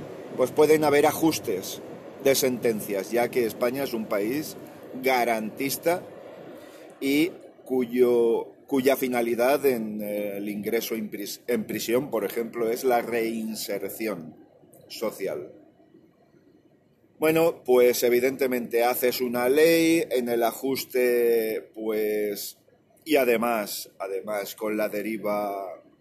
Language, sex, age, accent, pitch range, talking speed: Spanish, male, 40-59, Spanish, 110-135 Hz, 100 wpm